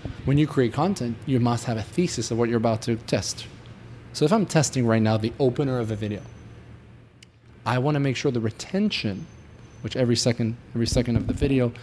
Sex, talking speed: male, 210 wpm